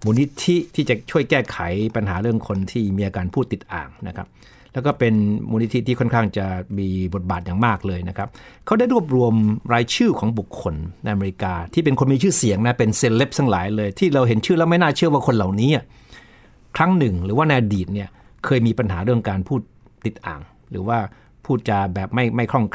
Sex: male